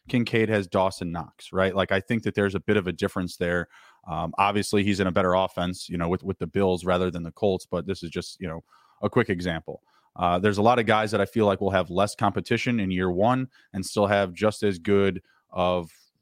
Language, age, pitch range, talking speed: English, 20-39, 95-110 Hz, 245 wpm